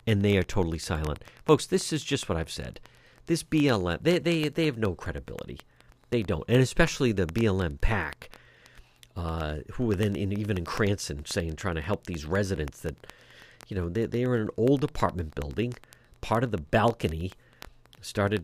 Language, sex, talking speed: English, male, 185 wpm